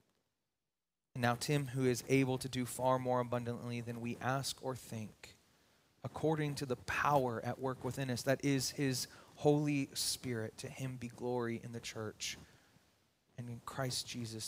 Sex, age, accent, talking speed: male, 30-49, American, 160 wpm